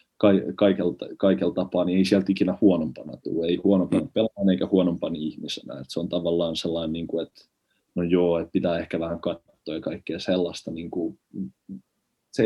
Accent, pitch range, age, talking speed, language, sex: native, 85-100 Hz, 20-39, 170 wpm, Finnish, male